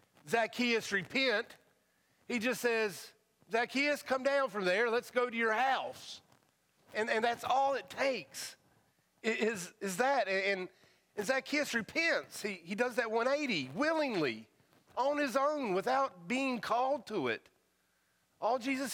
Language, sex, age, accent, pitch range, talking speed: English, male, 50-69, American, 160-255 Hz, 140 wpm